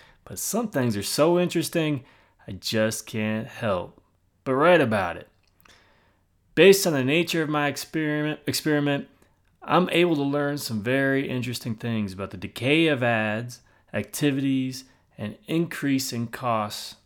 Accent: American